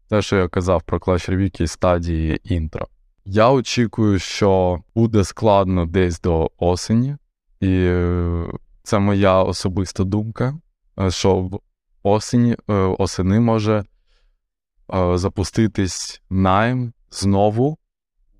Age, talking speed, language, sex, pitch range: 20-39, 90 wpm, Ukrainian, male, 90-105 Hz